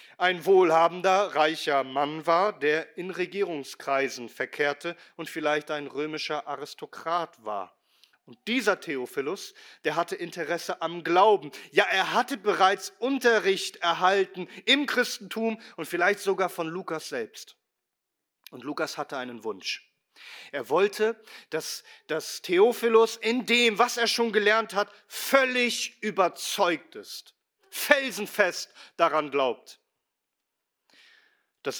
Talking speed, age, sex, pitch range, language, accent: 115 wpm, 40-59, male, 150-235 Hz, German, German